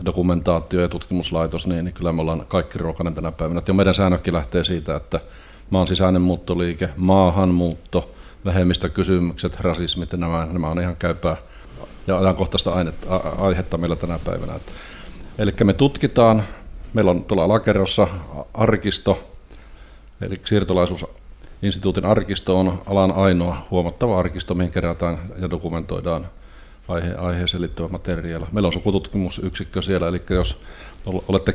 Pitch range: 85-100 Hz